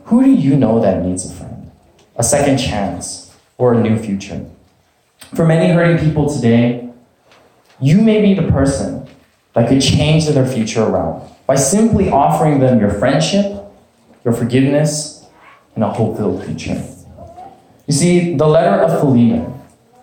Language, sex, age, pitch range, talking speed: English, male, 20-39, 115-170 Hz, 145 wpm